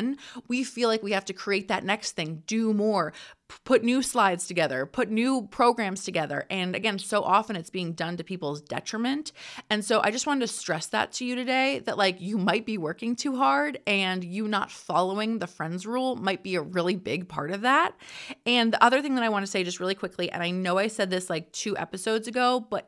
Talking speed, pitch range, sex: 230 wpm, 185-235 Hz, female